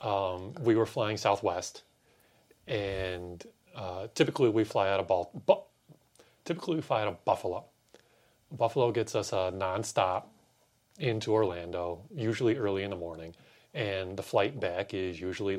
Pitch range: 90-115 Hz